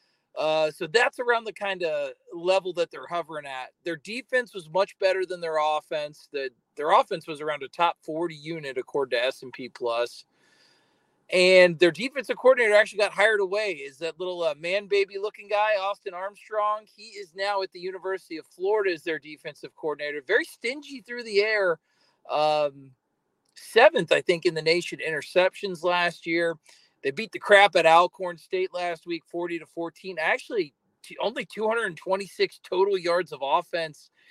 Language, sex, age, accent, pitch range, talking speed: English, male, 40-59, American, 165-215 Hz, 170 wpm